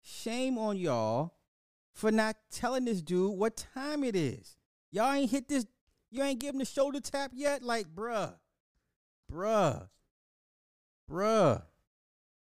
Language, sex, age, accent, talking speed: English, male, 30-49, American, 130 wpm